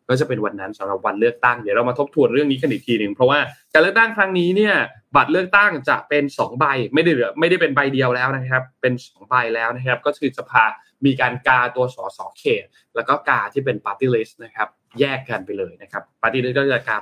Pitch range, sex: 120-145 Hz, male